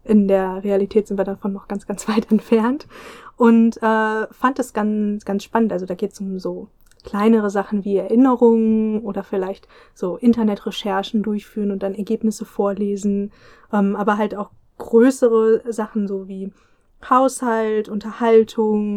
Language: German